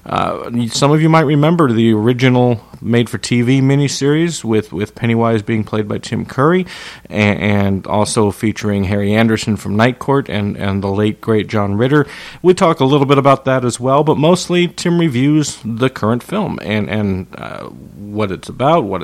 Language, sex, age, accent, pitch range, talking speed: English, male, 40-59, American, 105-130 Hz, 185 wpm